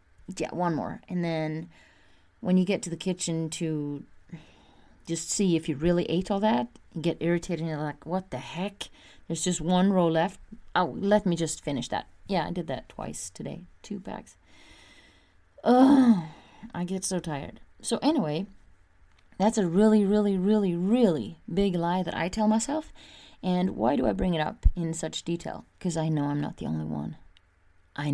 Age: 30-49